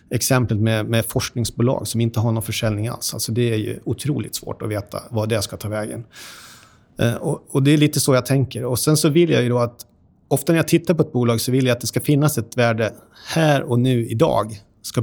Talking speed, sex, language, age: 245 wpm, male, Swedish, 30-49